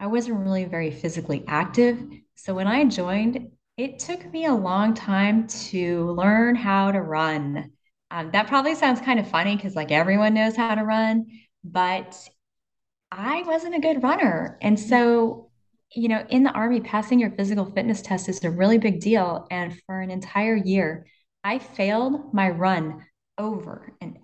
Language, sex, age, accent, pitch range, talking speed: English, female, 20-39, American, 170-225 Hz, 170 wpm